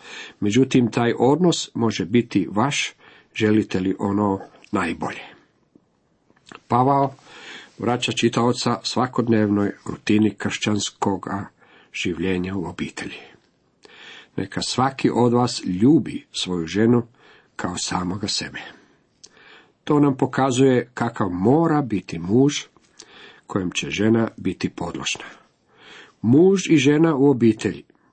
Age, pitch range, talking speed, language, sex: 50-69, 105-135 Hz, 100 wpm, Croatian, male